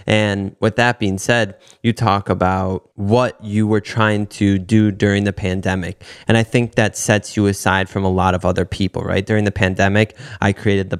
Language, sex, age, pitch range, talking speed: English, male, 20-39, 95-115 Hz, 200 wpm